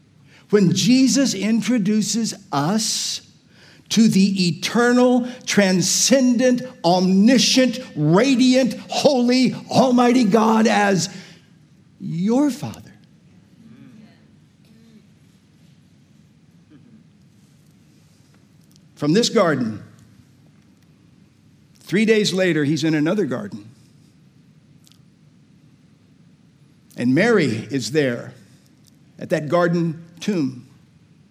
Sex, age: male, 50-69